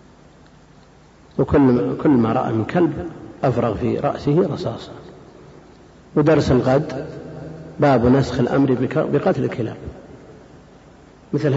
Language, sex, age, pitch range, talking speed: Arabic, male, 50-69, 120-145 Hz, 95 wpm